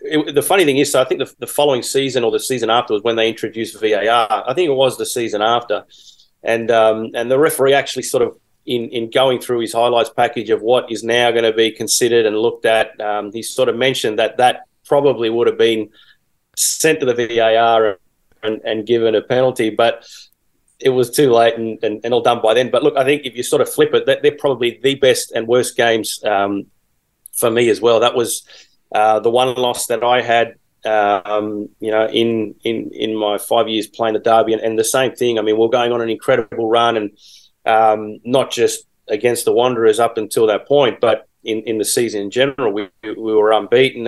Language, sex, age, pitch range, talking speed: English, male, 30-49, 110-135 Hz, 225 wpm